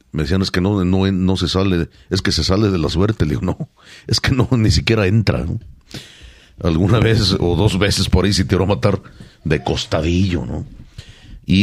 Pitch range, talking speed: 85-110 Hz, 210 wpm